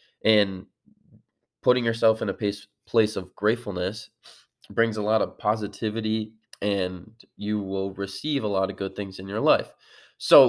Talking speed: 150 wpm